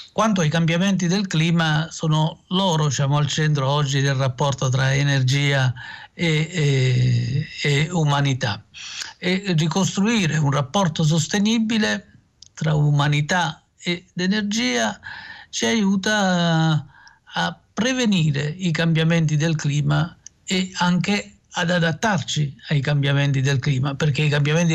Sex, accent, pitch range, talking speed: male, native, 145-180 Hz, 115 wpm